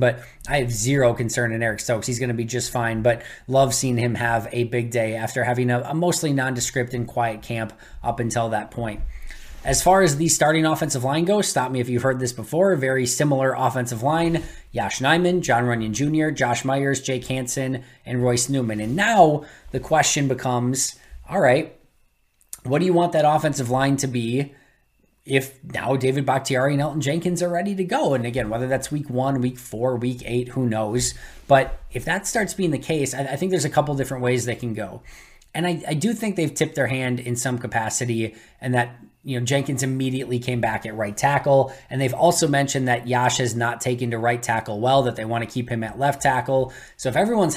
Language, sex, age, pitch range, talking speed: English, male, 20-39, 120-140 Hz, 215 wpm